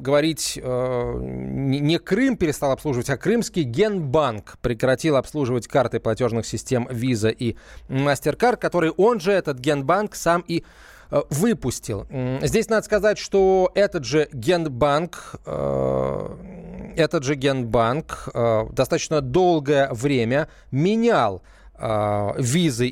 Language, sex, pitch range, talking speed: Russian, male, 125-175 Hz, 105 wpm